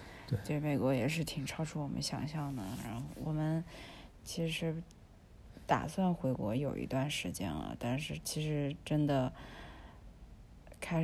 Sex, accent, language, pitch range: female, native, Chinese, 135-160 Hz